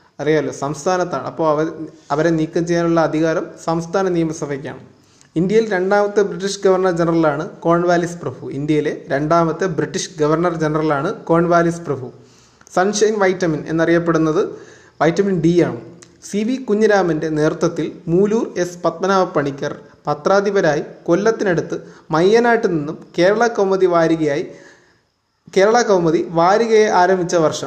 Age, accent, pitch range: 20-39, native, 155-190 Hz